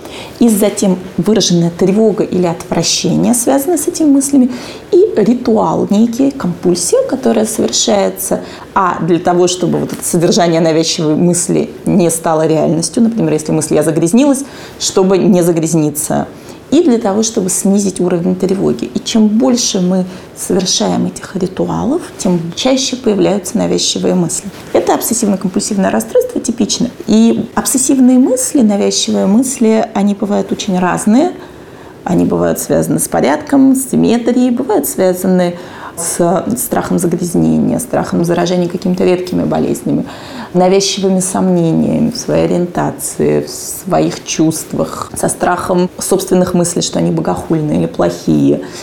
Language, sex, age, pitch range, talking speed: Russian, female, 30-49, 175-225 Hz, 125 wpm